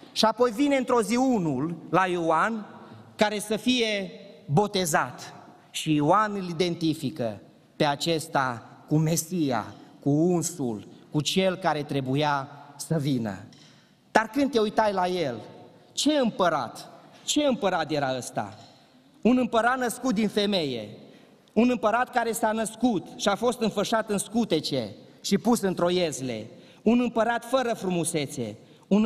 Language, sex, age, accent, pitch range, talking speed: Romanian, male, 30-49, native, 150-220 Hz, 135 wpm